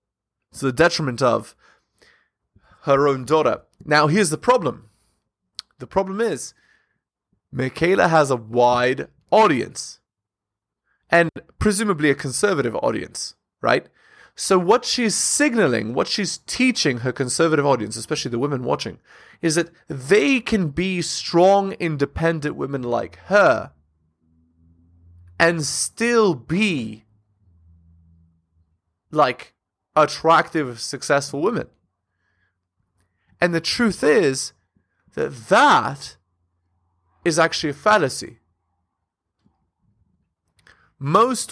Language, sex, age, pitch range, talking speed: English, male, 20-39, 105-165 Hz, 95 wpm